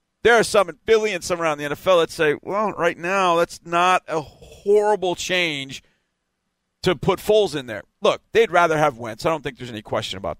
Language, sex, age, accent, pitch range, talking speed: English, male, 40-59, American, 135-180 Hz, 210 wpm